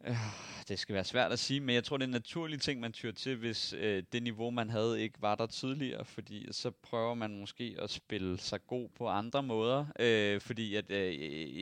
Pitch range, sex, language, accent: 110-140 Hz, male, Danish, native